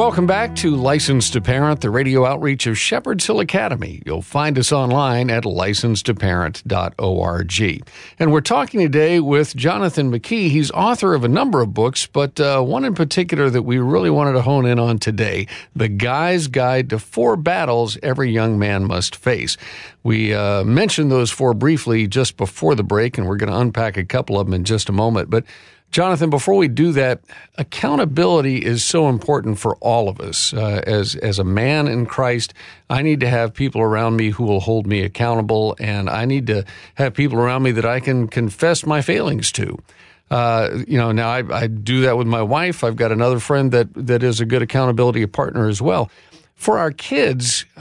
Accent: American